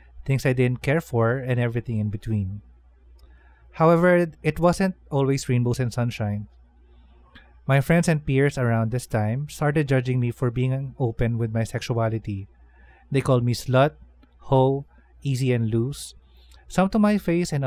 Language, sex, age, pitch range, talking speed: Filipino, male, 20-39, 105-140 Hz, 155 wpm